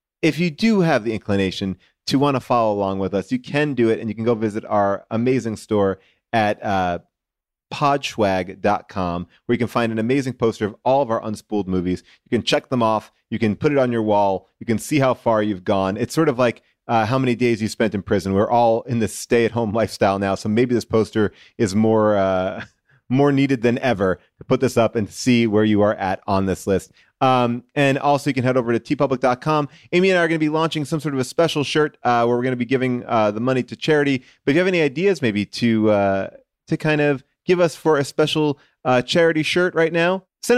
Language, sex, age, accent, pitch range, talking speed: English, male, 30-49, American, 105-145 Hz, 240 wpm